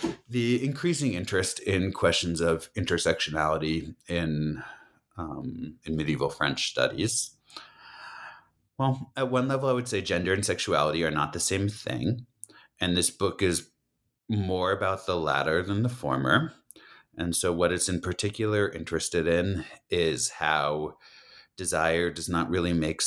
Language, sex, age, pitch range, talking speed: English, male, 30-49, 80-105 Hz, 140 wpm